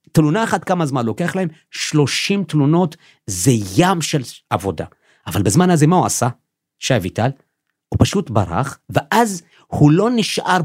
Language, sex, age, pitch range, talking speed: Hebrew, male, 50-69, 130-185 Hz, 150 wpm